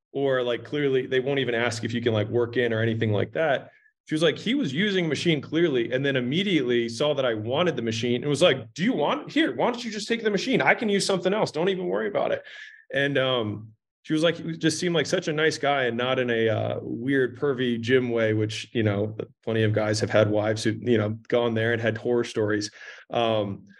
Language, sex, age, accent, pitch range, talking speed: English, male, 20-39, American, 105-140 Hz, 250 wpm